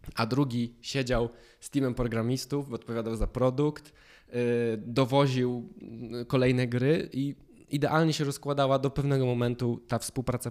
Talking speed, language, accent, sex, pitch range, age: 120 wpm, Polish, native, male, 115-140 Hz, 20-39